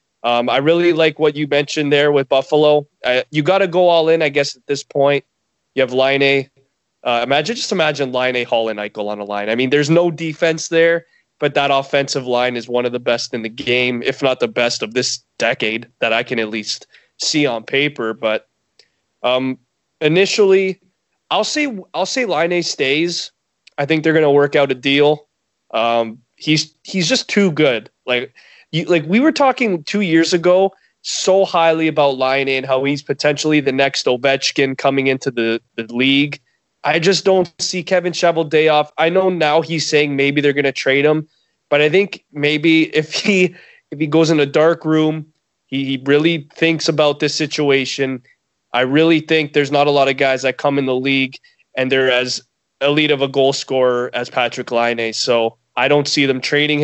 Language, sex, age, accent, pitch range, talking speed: English, male, 20-39, American, 130-160 Hz, 200 wpm